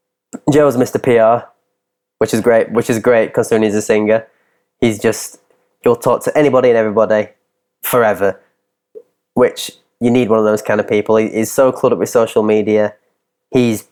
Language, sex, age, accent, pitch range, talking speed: English, male, 20-39, British, 100-120 Hz, 170 wpm